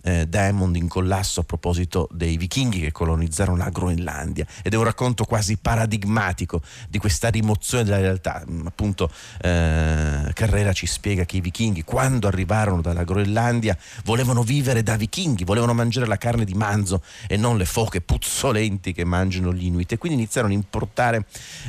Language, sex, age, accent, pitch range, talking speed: Italian, male, 40-59, native, 90-110 Hz, 165 wpm